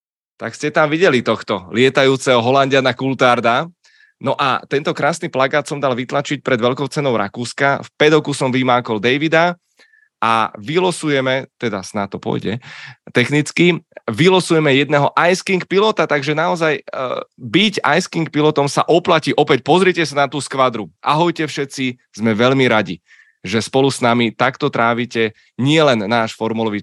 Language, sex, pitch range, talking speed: Czech, male, 120-160 Hz, 150 wpm